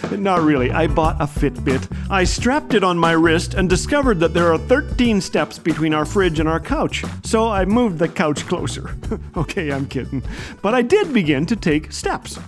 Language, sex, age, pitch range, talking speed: English, male, 40-59, 175-250 Hz, 195 wpm